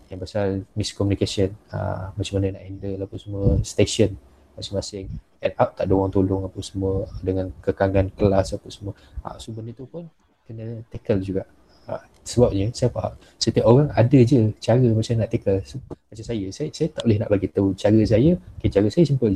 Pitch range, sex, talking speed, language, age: 95-115 Hz, male, 185 wpm, Malay, 20-39